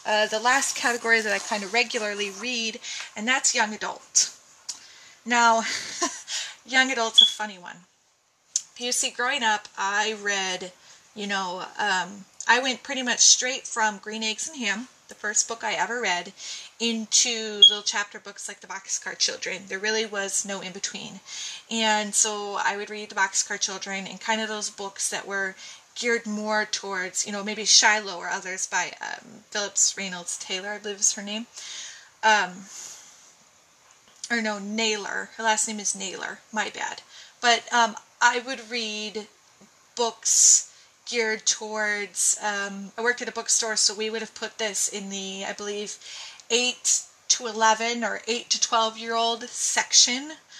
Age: 20-39